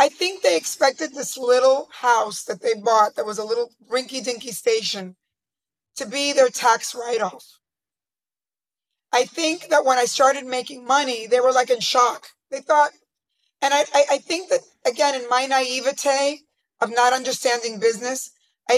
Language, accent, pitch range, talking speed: English, American, 230-275 Hz, 160 wpm